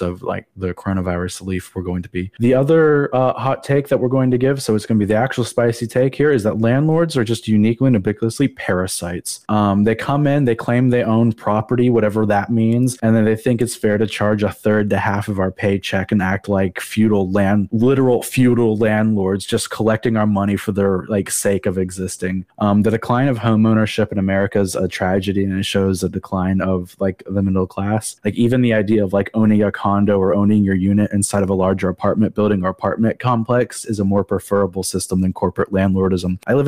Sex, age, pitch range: male, 20-39, 95-115 Hz